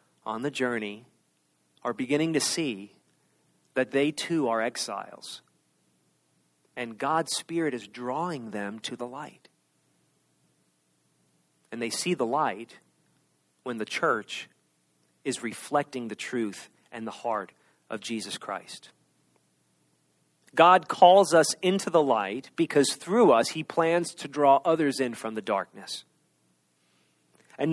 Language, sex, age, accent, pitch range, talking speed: English, male, 40-59, American, 115-165 Hz, 125 wpm